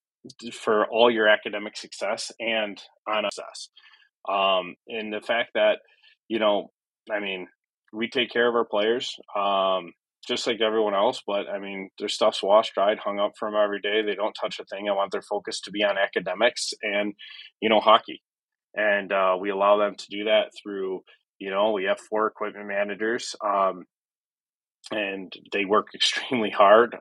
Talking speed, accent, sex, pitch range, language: 180 wpm, American, male, 100-110 Hz, English